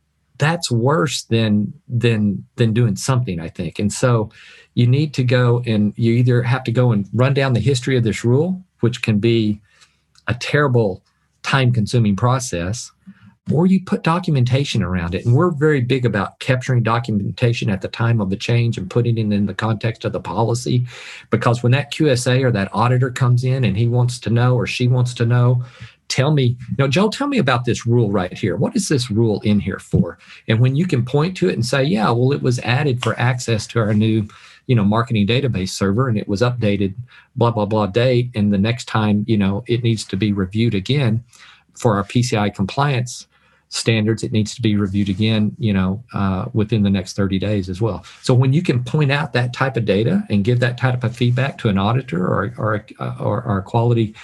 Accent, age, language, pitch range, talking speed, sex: American, 50-69, English, 105-125 Hz, 210 wpm, male